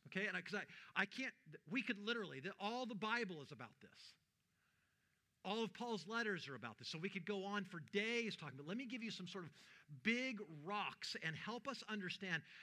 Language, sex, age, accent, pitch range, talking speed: English, male, 50-69, American, 155-220 Hz, 210 wpm